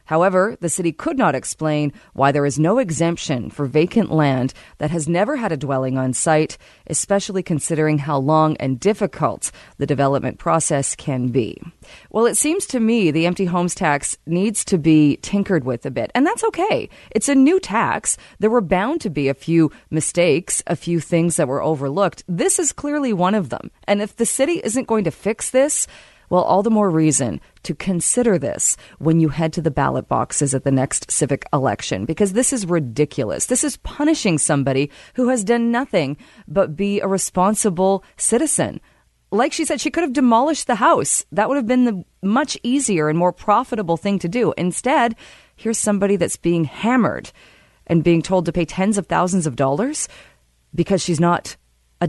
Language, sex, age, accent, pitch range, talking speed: English, female, 30-49, American, 155-225 Hz, 190 wpm